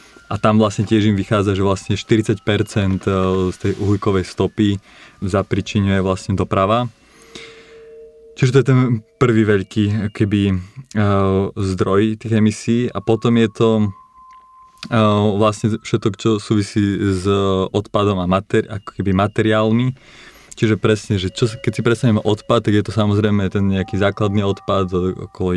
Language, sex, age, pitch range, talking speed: Slovak, male, 20-39, 95-110 Hz, 135 wpm